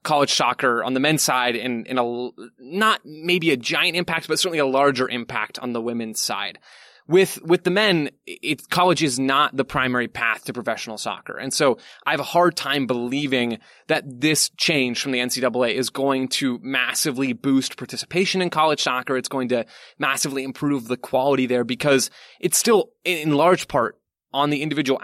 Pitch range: 125-155 Hz